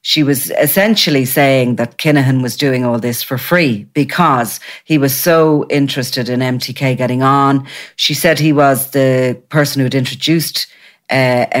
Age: 40-59